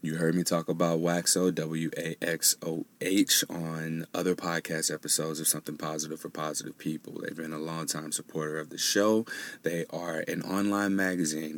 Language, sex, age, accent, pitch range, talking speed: English, male, 30-49, American, 80-90 Hz, 155 wpm